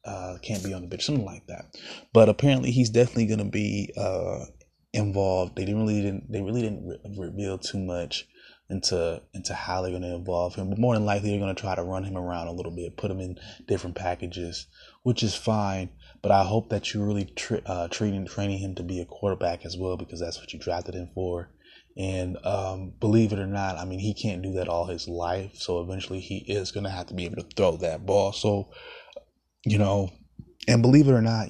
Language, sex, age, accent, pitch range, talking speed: English, male, 20-39, American, 90-105 Hz, 230 wpm